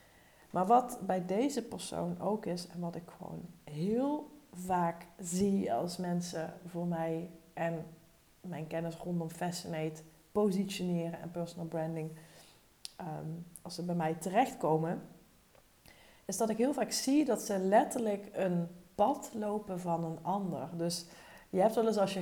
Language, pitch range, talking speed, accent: Dutch, 165-200 Hz, 150 wpm, Dutch